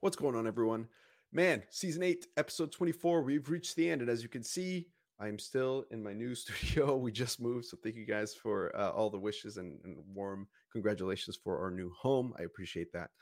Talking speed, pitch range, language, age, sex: 215 wpm, 95-120 Hz, English, 30-49, male